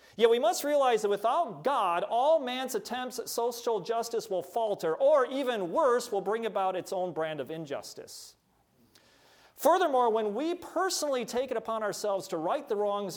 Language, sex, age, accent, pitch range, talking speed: English, male, 40-59, American, 175-235 Hz, 175 wpm